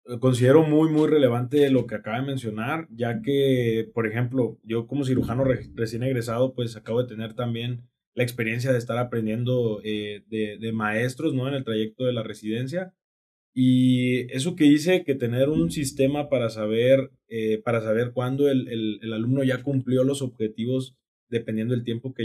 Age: 20-39